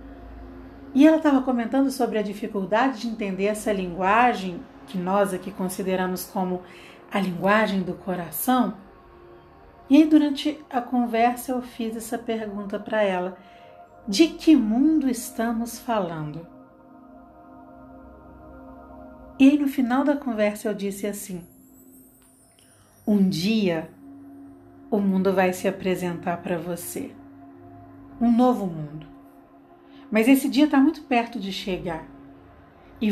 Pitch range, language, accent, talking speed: 170-240 Hz, Portuguese, Brazilian, 120 wpm